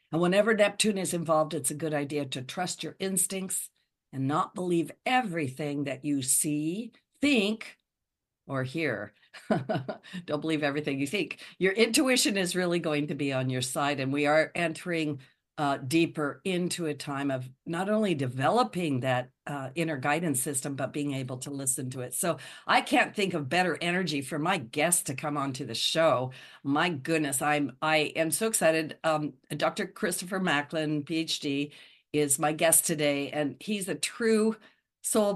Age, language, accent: 50-69, English, American